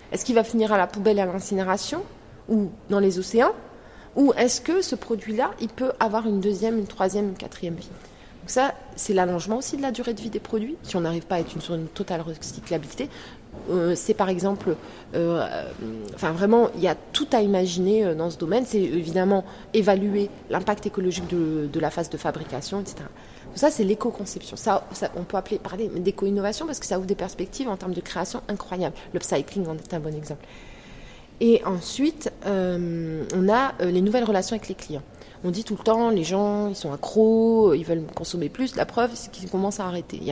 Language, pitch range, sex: French, 170-220 Hz, female